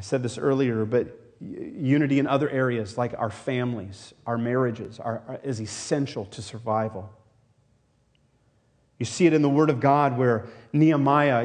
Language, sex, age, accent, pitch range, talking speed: English, male, 40-59, American, 135-175 Hz, 155 wpm